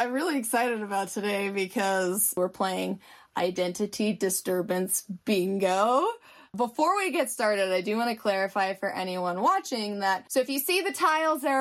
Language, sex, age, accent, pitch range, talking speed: English, female, 20-39, American, 205-255 Hz, 160 wpm